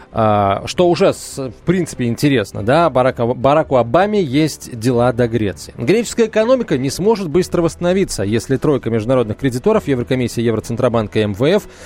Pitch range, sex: 115-170 Hz, male